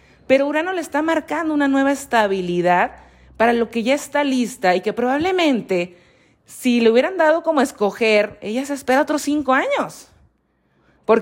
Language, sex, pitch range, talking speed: Spanish, female, 205-280 Hz, 160 wpm